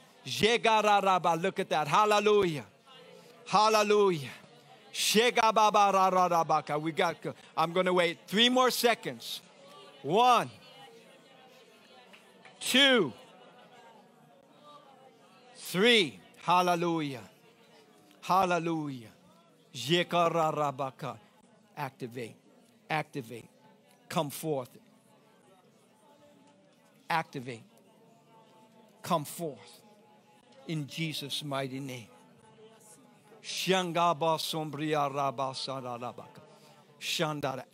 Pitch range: 155-215 Hz